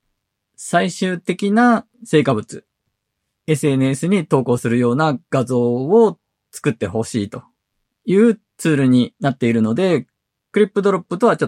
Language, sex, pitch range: Japanese, male, 115-160 Hz